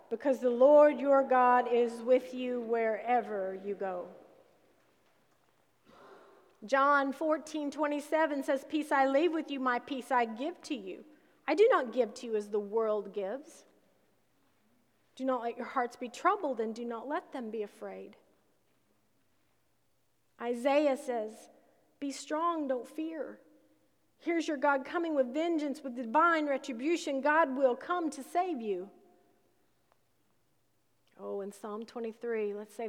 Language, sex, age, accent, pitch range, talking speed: English, female, 40-59, American, 230-280 Hz, 140 wpm